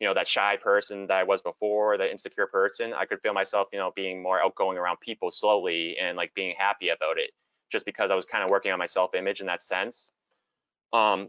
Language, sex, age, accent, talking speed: English, male, 20-39, American, 235 wpm